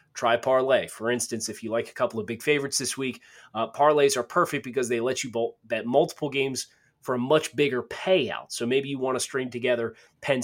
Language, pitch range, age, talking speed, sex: English, 110-140 Hz, 30-49, 225 wpm, male